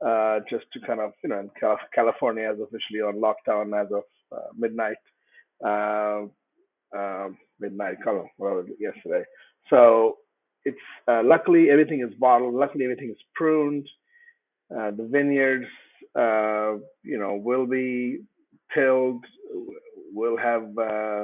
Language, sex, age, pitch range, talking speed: English, male, 50-69, 110-140 Hz, 125 wpm